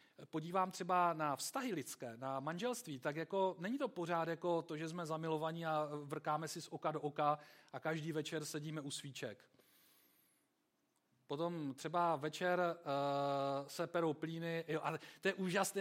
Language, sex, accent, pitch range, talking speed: Czech, male, native, 150-180 Hz, 160 wpm